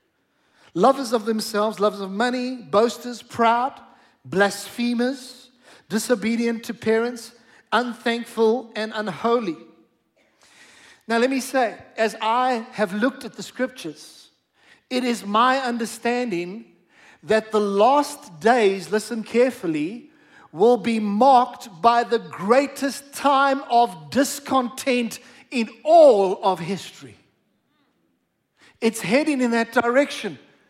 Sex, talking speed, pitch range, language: male, 105 wpm, 210-255 Hz, English